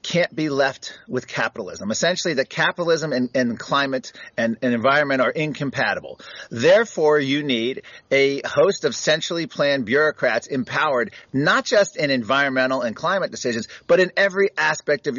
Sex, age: male, 40-59